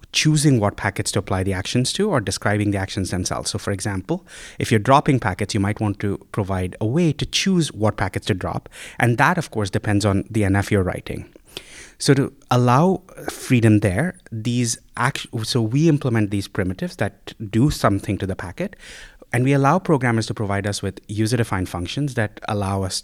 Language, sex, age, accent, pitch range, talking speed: English, male, 30-49, Indian, 100-120 Hz, 195 wpm